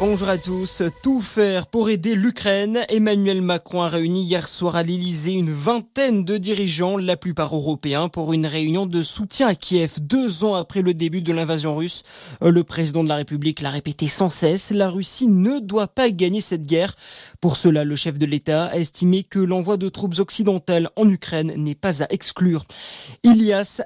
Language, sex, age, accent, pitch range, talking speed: French, male, 20-39, French, 160-200 Hz, 190 wpm